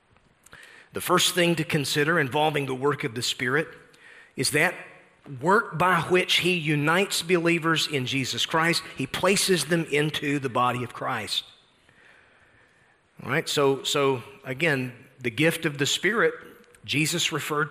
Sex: male